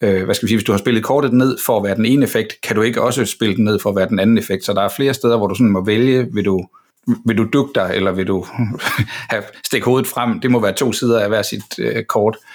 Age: 60-79